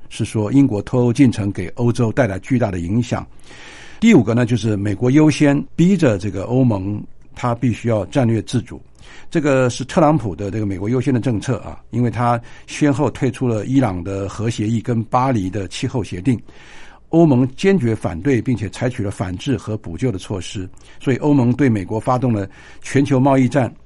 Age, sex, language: 60-79, male, Chinese